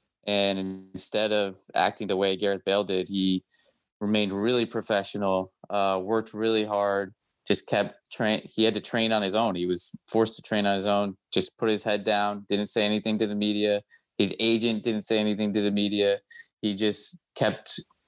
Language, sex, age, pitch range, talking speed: English, male, 20-39, 100-110 Hz, 185 wpm